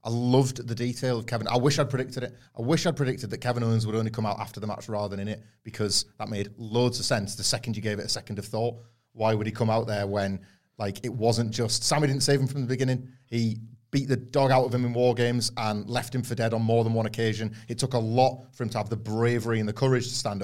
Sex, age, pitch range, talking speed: male, 30-49, 110-130 Hz, 285 wpm